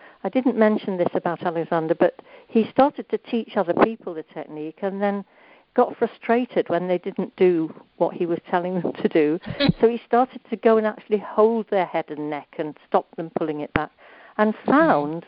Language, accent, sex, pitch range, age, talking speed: English, British, female, 175-235 Hz, 60-79, 195 wpm